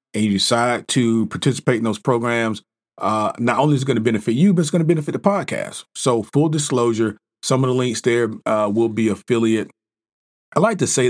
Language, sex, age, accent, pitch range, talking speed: English, male, 40-59, American, 110-135 Hz, 215 wpm